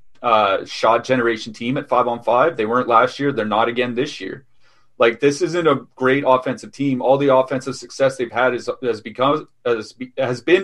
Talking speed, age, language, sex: 205 wpm, 30-49, English, male